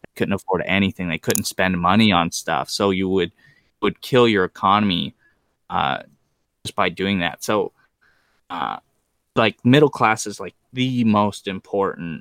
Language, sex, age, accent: English, male, 20-39, American